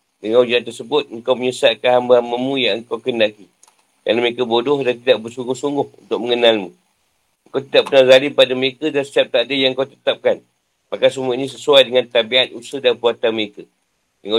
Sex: male